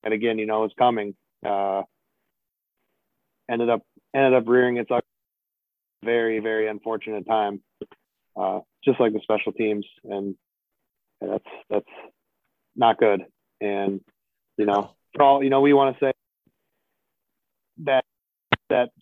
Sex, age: male, 30-49